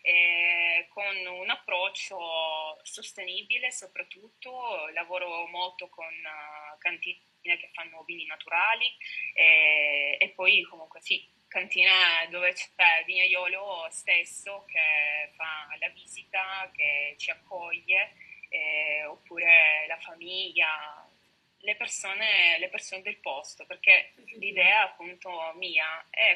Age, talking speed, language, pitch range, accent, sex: 20-39, 110 wpm, Italian, 165-220 Hz, native, female